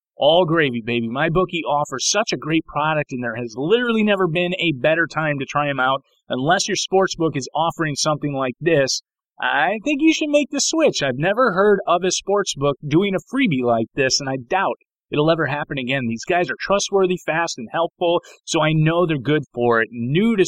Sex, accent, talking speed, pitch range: male, American, 215 wpm, 140-185 Hz